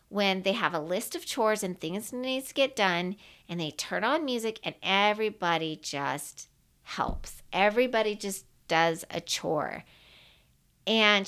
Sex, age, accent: female, 40-59, American